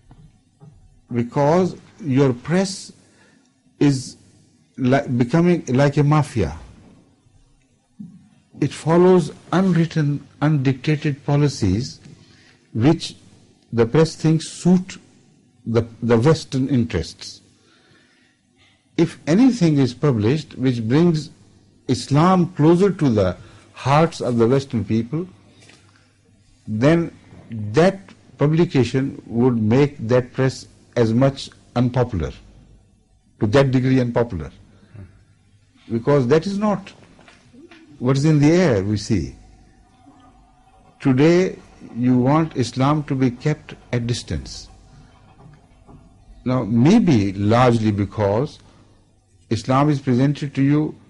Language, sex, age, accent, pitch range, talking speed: English, male, 60-79, Indian, 110-150 Hz, 95 wpm